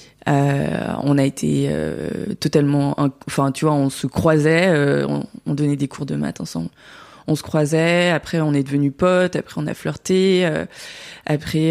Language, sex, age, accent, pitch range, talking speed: French, female, 20-39, French, 150-180 Hz, 185 wpm